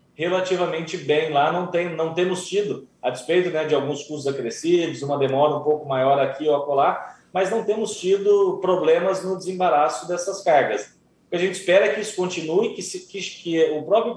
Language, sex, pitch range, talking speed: Portuguese, male, 145-185 Hz, 200 wpm